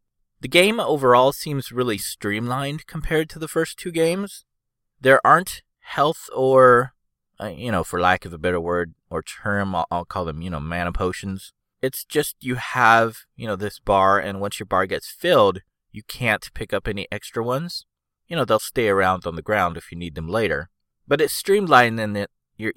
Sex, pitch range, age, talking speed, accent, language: male, 95-125 Hz, 30-49, 200 wpm, American, English